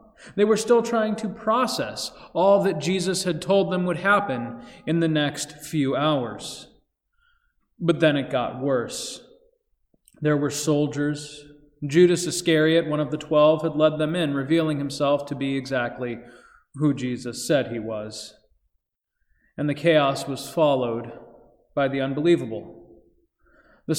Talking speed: 140 wpm